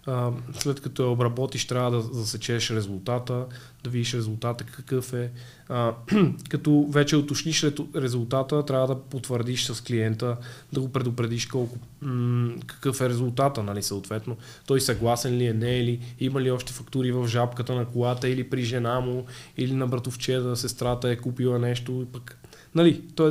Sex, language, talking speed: male, Bulgarian, 165 wpm